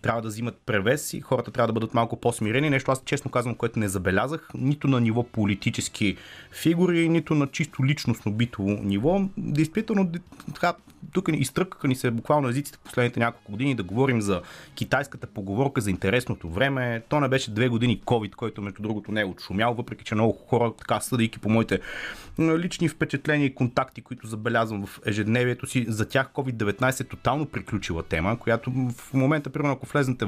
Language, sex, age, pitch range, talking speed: Bulgarian, male, 30-49, 110-145 Hz, 175 wpm